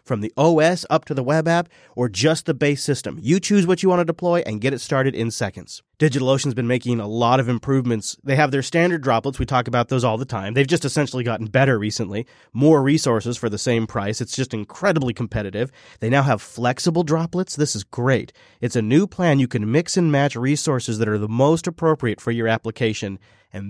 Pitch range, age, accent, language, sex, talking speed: 115-155 Hz, 30-49, American, English, male, 225 wpm